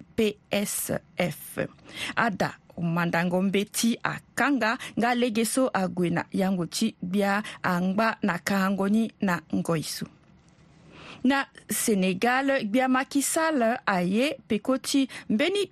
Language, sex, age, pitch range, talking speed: French, female, 50-69, 190-260 Hz, 80 wpm